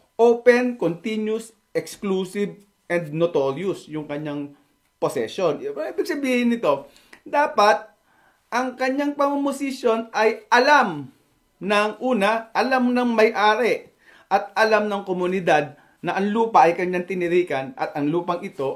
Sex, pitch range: male, 165-245 Hz